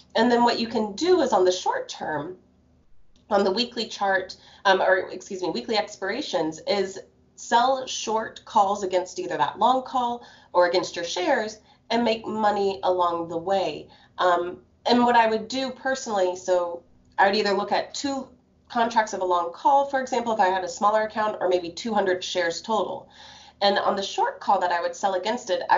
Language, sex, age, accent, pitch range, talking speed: English, female, 30-49, American, 175-225 Hz, 195 wpm